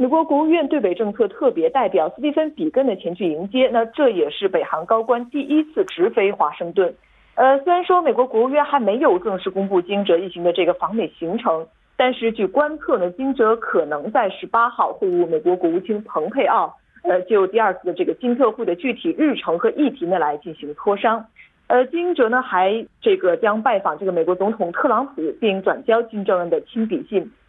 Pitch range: 195-310 Hz